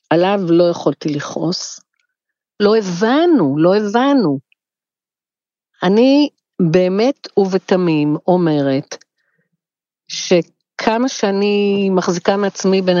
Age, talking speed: 50-69, 80 wpm